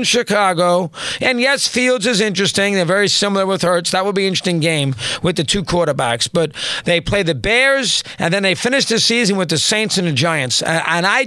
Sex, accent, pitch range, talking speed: male, American, 180-235 Hz, 215 wpm